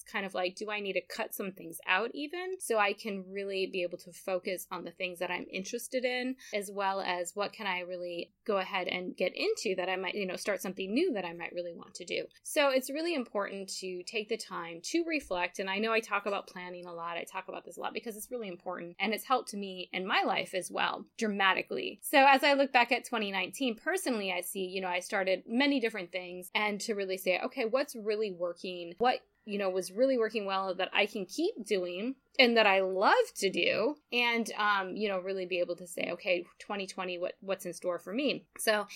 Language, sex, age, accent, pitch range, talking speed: English, female, 20-39, American, 185-245 Hz, 240 wpm